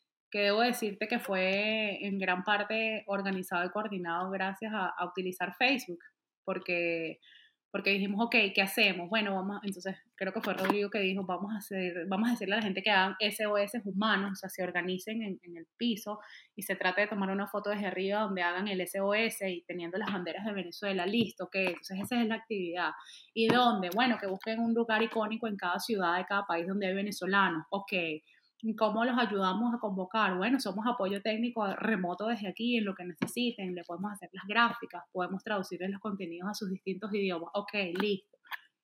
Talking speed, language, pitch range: 200 wpm, Spanish, 190-225 Hz